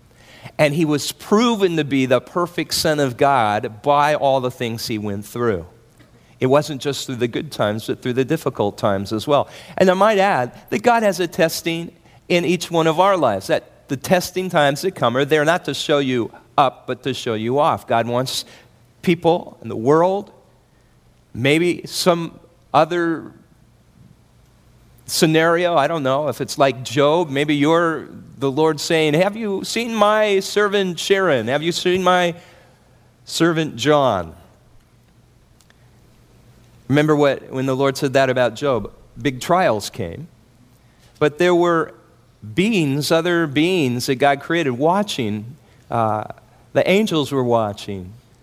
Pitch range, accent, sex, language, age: 120-170 Hz, American, male, Korean, 40-59